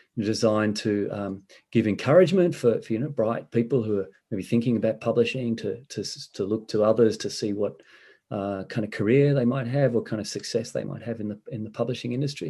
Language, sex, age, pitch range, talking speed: English, male, 30-49, 110-125 Hz, 220 wpm